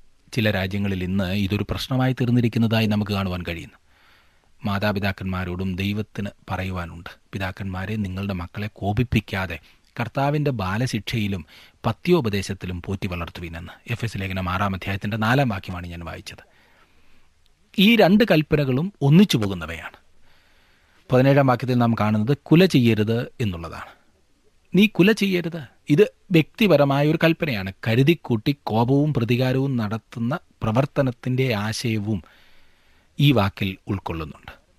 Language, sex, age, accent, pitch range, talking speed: Malayalam, male, 30-49, native, 95-130 Hz, 95 wpm